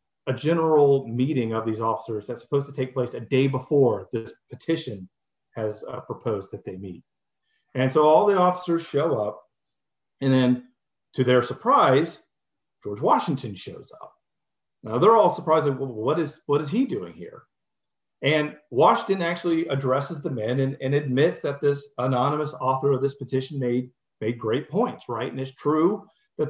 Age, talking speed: 40-59, 170 wpm